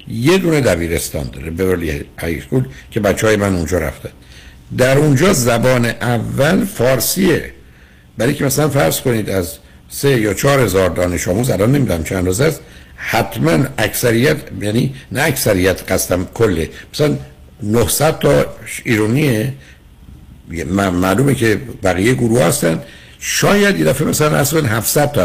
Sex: male